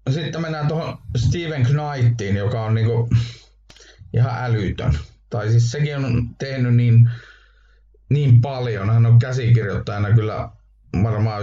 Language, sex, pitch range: Finnish, male, 105-120 Hz